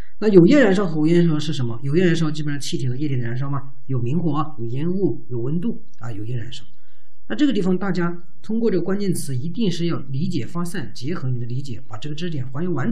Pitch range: 130-175 Hz